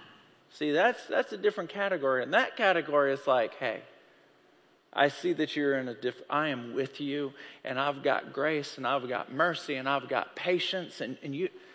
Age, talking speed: 40-59, 195 wpm